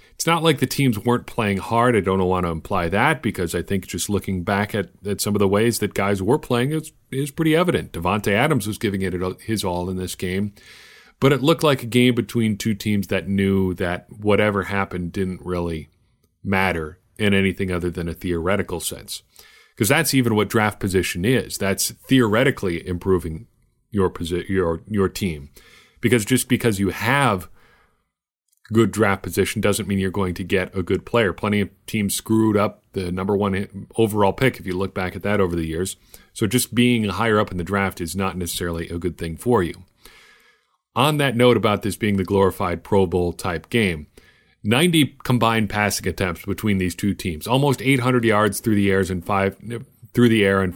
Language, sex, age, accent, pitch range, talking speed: English, male, 40-59, American, 95-115 Hz, 195 wpm